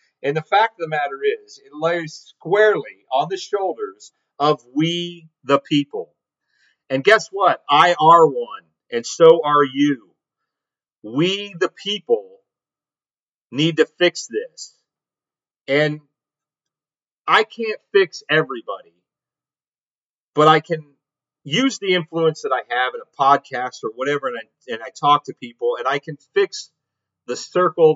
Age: 40-59